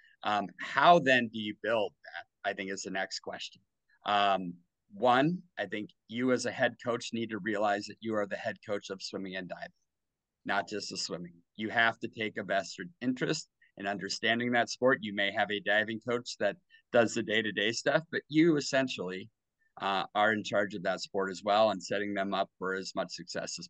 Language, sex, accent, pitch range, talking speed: English, male, American, 100-130 Hz, 210 wpm